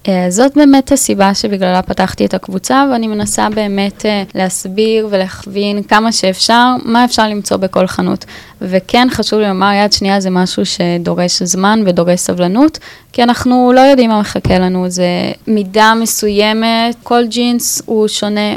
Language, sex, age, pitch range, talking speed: Hebrew, female, 20-39, 190-235 Hz, 150 wpm